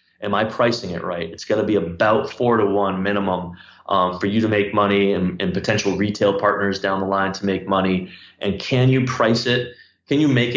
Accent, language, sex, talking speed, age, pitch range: American, English, male, 220 wpm, 20-39, 95-110 Hz